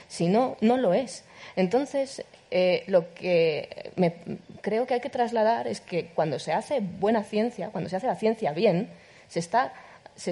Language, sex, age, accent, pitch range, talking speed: Spanish, female, 20-39, Spanish, 170-225 Hz, 180 wpm